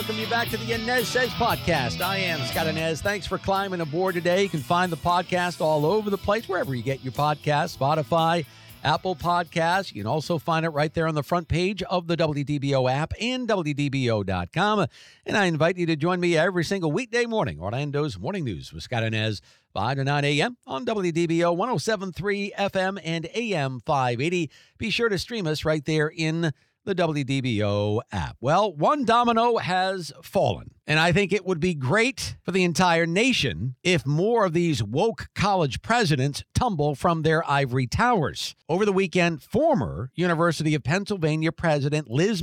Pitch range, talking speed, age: 145-195 Hz, 180 wpm, 50-69